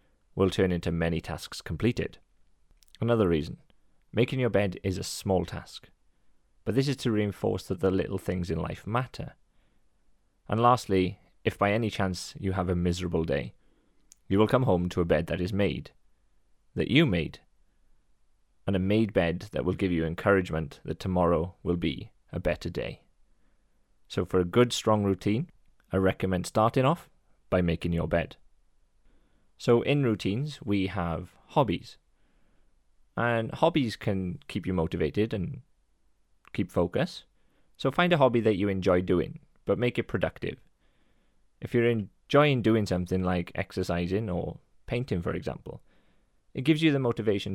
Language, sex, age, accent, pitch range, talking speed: English, male, 30-49, British, 90-115 Hz, 155 wpm